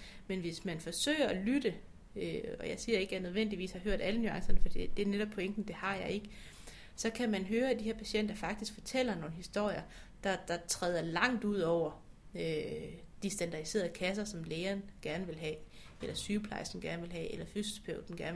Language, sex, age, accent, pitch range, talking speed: Danish, female, 30-49, native, 180-220 Hz, 205 wpm